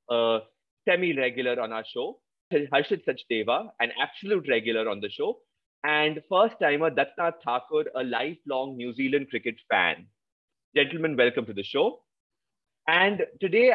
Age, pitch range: 30-49, 130-190 Hz